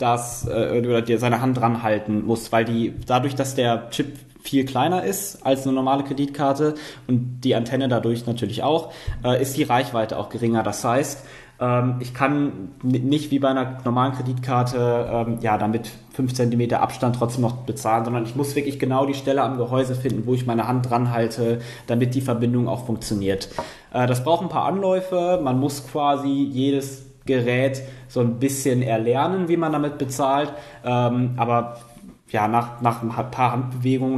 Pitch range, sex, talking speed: 115-130 Hz, male, 165 wpm